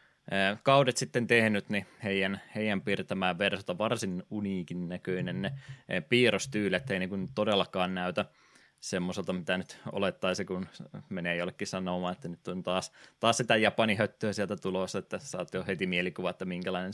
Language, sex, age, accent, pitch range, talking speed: Finnish, male, 20-39, native, 95-115 Hz, 150 wpm